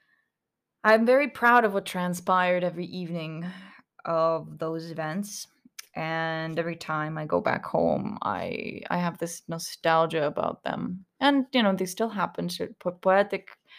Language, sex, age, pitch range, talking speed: English, female, 20-39, 165-210 Hz, 145 wpm